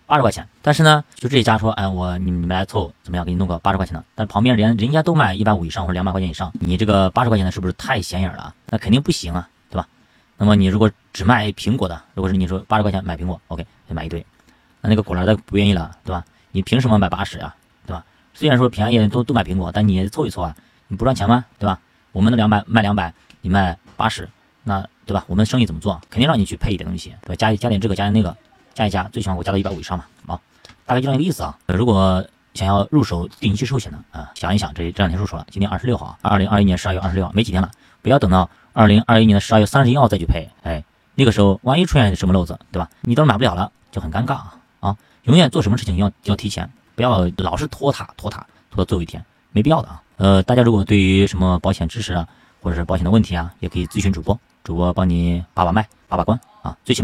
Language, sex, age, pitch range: Chinese, male, 20-39, 90-110 Hz